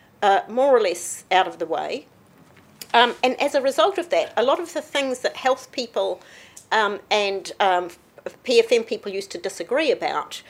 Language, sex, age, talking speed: English, female, 50-69, 175 wpm